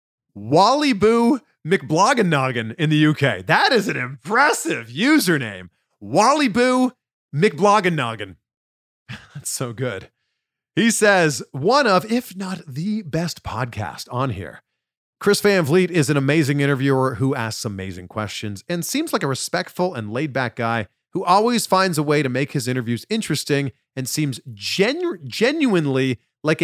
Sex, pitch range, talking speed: male, 115-185 Hz, 135 wpm